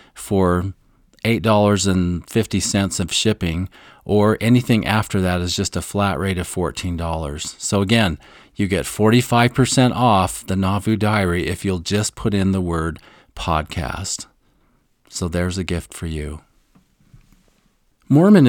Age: 40-59